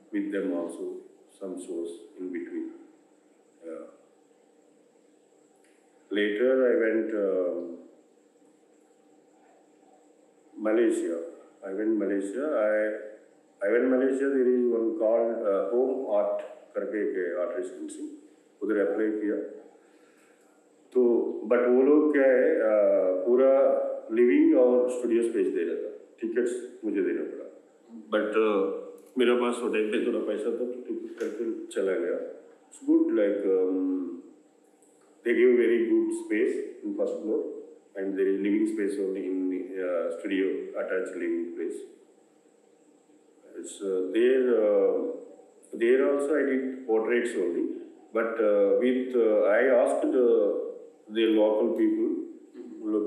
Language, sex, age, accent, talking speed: English, male, 50-69, Indian, 95 wpm